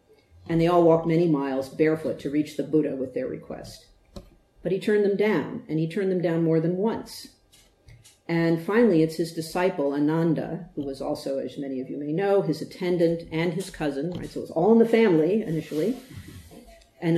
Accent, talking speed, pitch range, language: American, 200 wpm, 145-175 Hz, English